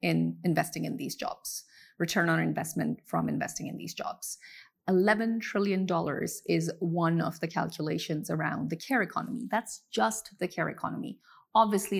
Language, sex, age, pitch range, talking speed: English, female, 30-49, 170-215 Hz, 150 wpm